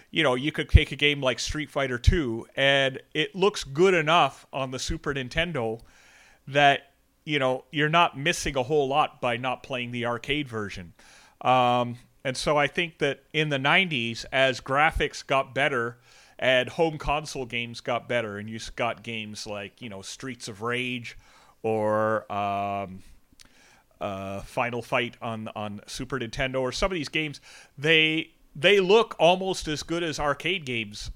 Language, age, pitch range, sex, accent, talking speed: English, 30-49, 120-150 Hz, male, American, 170 wpm